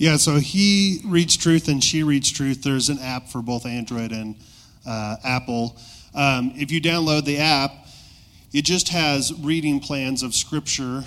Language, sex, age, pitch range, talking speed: English, male, 30-49, 120-145 Hz, 170 wpm